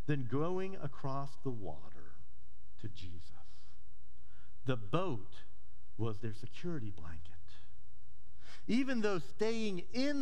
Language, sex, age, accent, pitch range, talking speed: English, male, 50-69, American, 95-160 Hz, 100 wpm